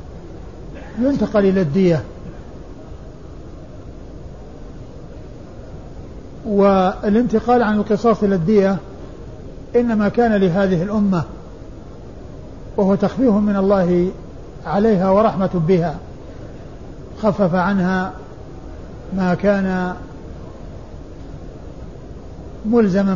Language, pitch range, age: Arabic, 180-210 Hz, 50-69